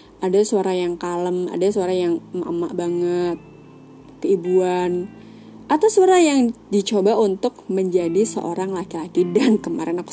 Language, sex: Indonesian, female